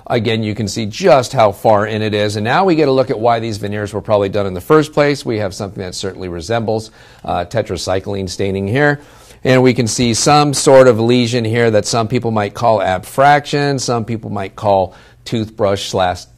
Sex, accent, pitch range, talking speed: male, American, 95-120 Hz, 215 wpm